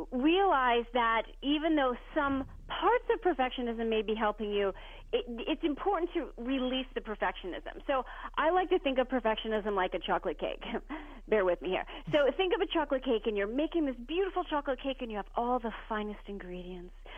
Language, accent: English, American